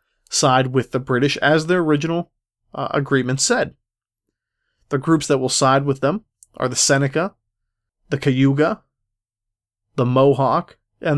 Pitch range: 120-155 Hz